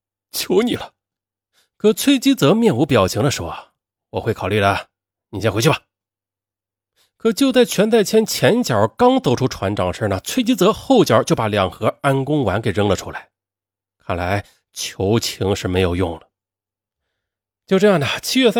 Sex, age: male, 30-49